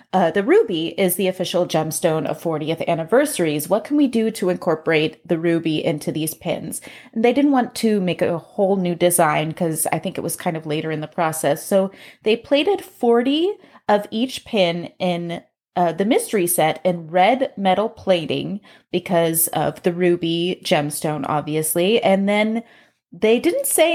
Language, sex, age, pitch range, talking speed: English, female, 20-39, 175-235 Hz, 170 wpm